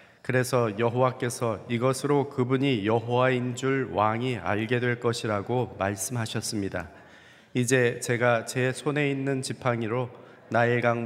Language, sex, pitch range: Korean, male, 110-130 Hz